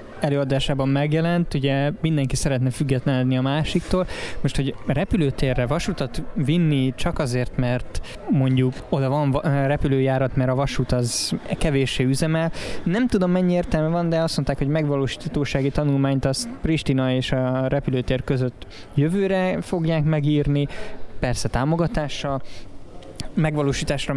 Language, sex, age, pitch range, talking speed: Hungarian, male, 20-39, 125-150 Hz, 120 wpm